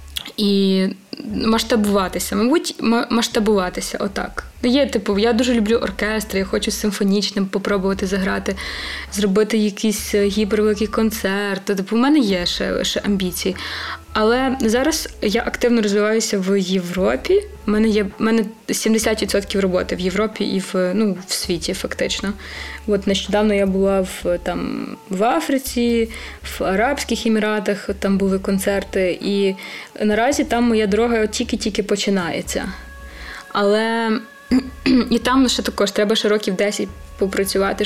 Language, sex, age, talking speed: Ukrainian, female, 20-39, 125 wpm